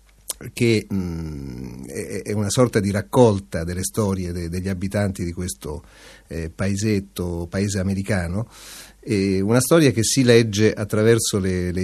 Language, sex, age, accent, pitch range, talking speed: Italian, male, 40-59, native, 95-110 Hz, 135 wpm